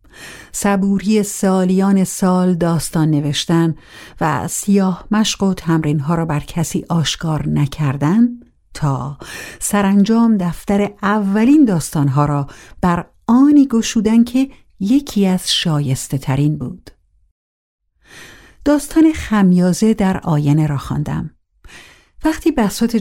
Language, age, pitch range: Persian, 50-69, 150-205 Hz